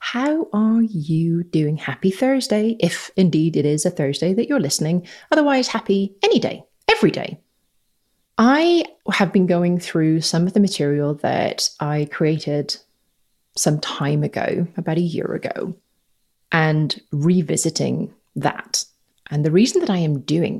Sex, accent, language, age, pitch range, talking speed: female, British, English, 30-49, 155-200 Hz, 145 wpm